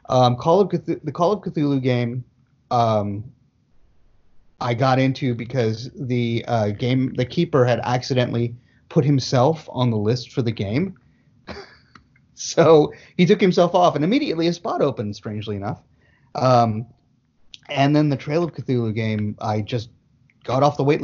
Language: English